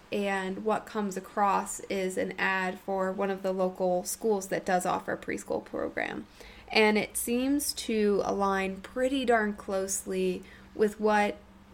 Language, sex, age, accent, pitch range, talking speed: English, female, 30-49, American, 190-220 Hz, 150 wpm